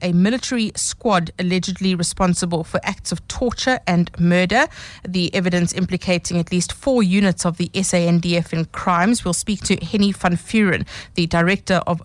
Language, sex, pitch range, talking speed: English, female, 175-215 Hz, 160 wpm